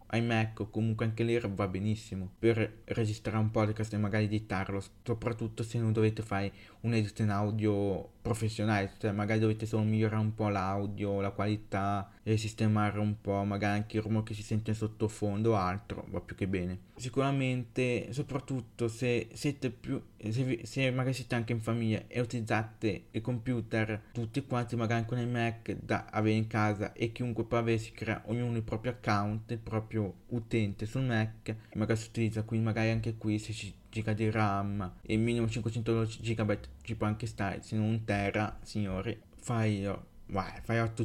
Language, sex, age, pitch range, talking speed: Italian, male, 20-39, 105-115 Hz, 175 wpm